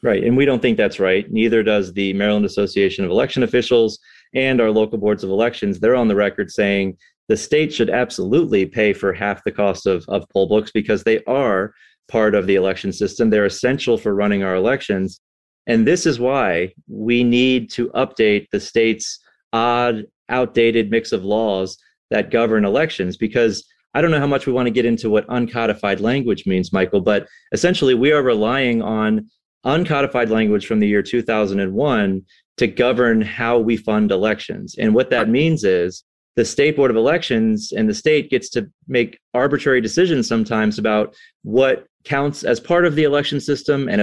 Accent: American